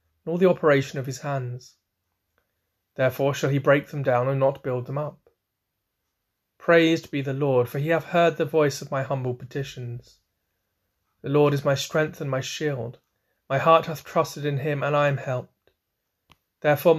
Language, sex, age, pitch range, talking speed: English, male, 30-49, 120-145 Hz, 175 wpm